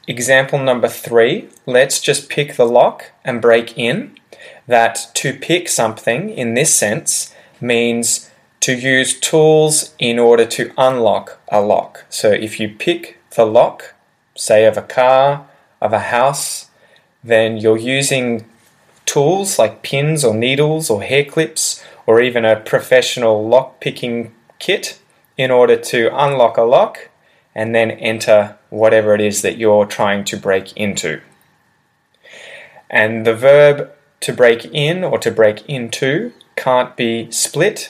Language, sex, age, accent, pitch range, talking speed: English, male, 20-39, Australian, 110-130 Hz, 145 wpm